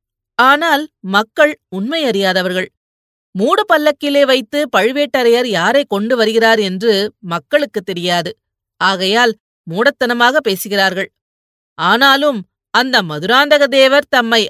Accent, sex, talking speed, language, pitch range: native, female, 85 wpm, Tamil, 185-270 Hz